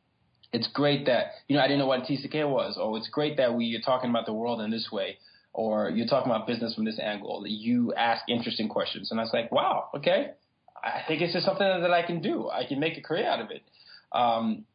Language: English